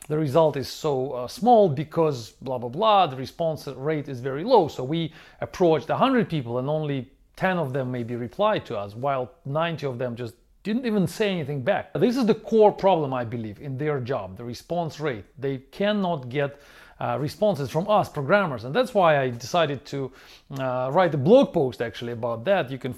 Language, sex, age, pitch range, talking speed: English, male, 40-59, 130-185 Hz, 200 wpm